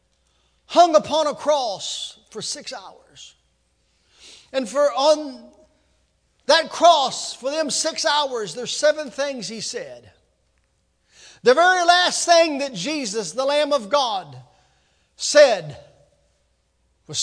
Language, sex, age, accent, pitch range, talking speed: English, male, 40-59, American, 255-320 Hz, 115 wpm